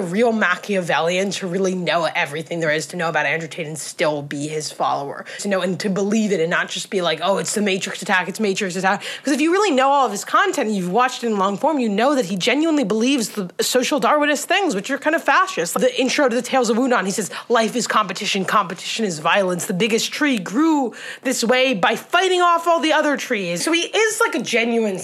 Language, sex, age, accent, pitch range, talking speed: English, female, 20-39, American, 185-270 Hz, 240 wpm